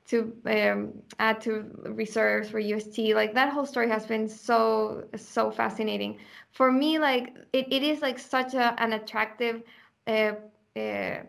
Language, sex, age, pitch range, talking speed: English, female, 10-29, 215-245 Hz, 155 wpm